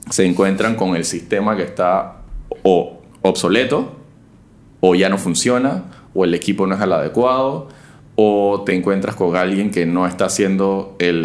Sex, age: male, 20-39